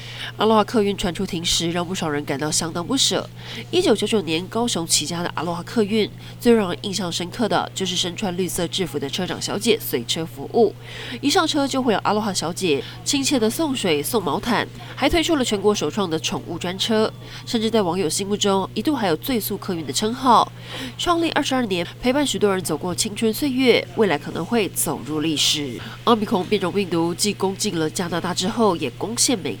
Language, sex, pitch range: Chinese, female, 165-225 Hz